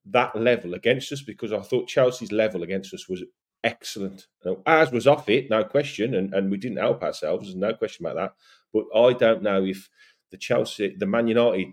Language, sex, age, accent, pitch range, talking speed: English, male, 40-59, British, 95-120 Hz, 210 wpm